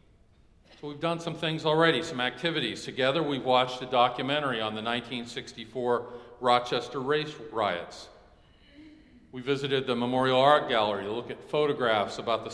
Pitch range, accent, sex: 115-135 Hz, American, male